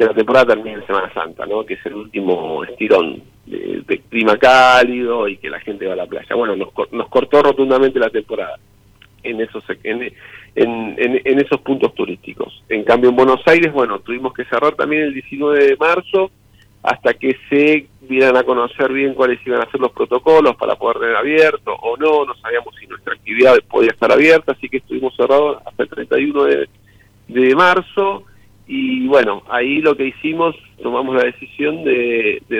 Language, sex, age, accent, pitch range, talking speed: Spanish, male, 50-69, Argentinian, 115-155 Hz, 190 wpm